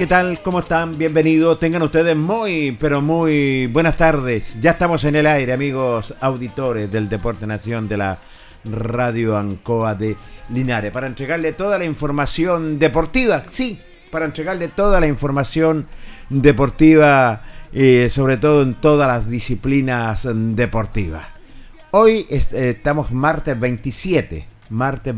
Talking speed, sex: 135 wpm, male